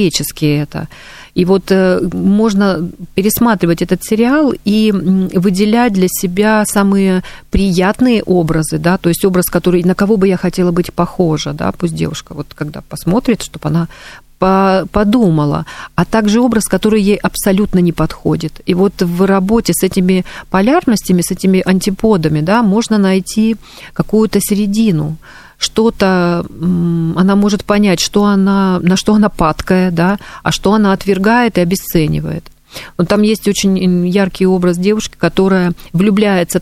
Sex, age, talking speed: female, 40-59, 140 wpm